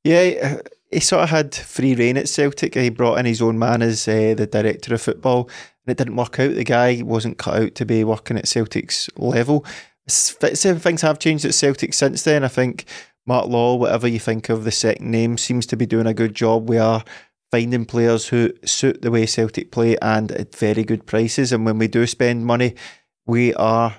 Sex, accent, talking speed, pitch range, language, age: male, British, 215 wpm, 115-130 Hz, English, 20-39